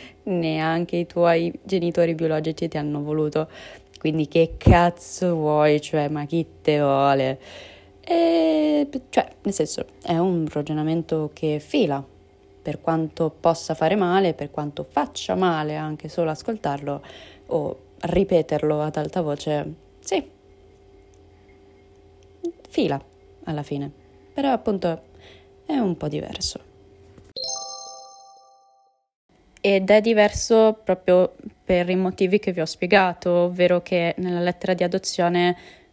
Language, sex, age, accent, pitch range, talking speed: Italian, female, 20-39, native, 155-195 Hz, 115 wpm